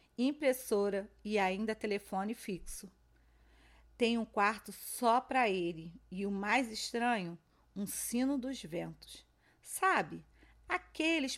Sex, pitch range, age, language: female, 185-230 Hz, 40-59, Portuguese